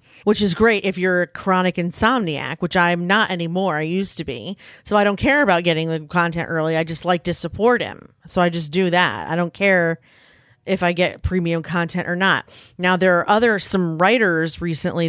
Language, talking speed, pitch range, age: English, 210 wpm, 170-200 Hz, 30-49